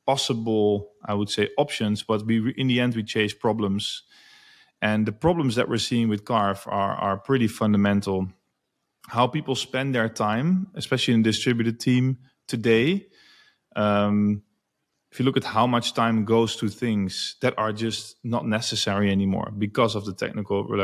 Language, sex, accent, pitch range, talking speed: English, male, Dutch, 105-130 Hz, 160 wpm